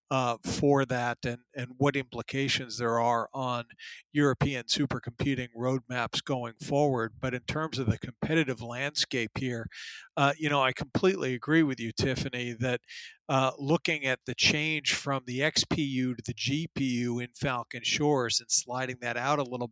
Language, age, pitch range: English, 50-69, 130-155 Hz